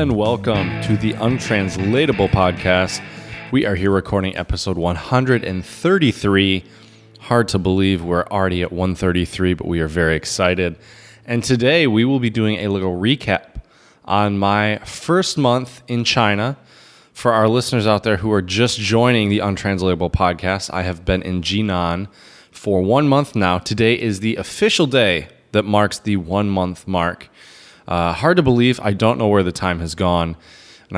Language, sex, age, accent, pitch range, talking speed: English, male, 20-39, American, 90-110 Hz, 160 wpm